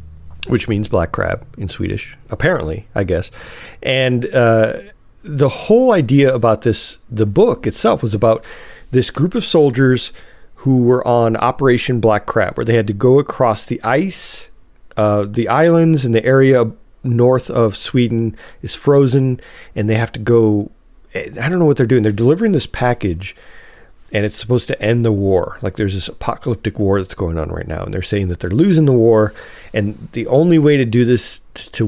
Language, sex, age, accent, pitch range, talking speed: English, male, 40-59, American, 105-130 Hz, 185 wpm